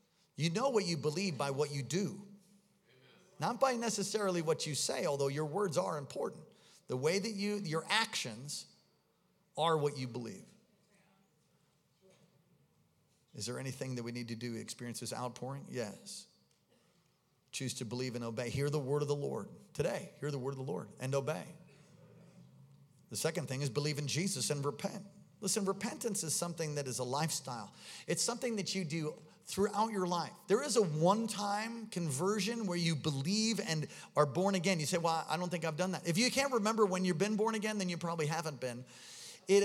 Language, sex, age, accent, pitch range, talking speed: English, male, 40-59, American, 145-200 Hz, 190 wpm